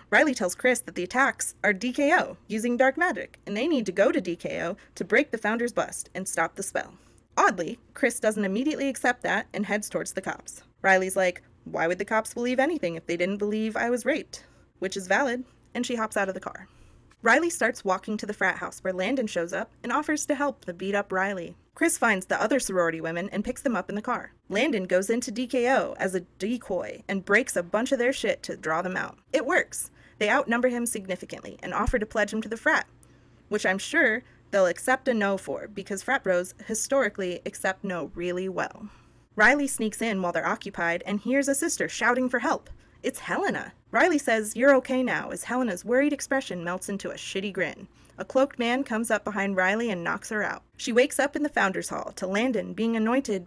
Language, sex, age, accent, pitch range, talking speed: English, female, 20-39, American, 190-255 Hz, 220 wpm